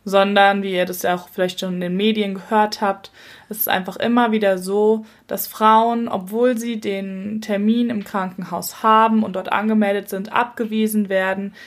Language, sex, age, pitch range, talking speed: German, female, 20-39, 185-220 Hz, 175 wpm